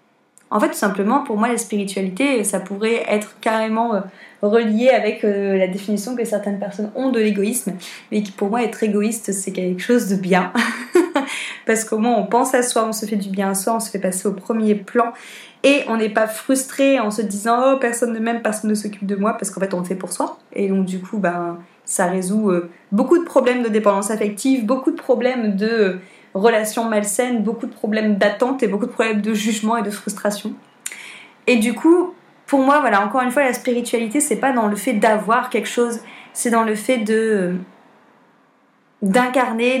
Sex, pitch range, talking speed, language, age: female, 205-245 Hz, 215 wpm, French, 20-39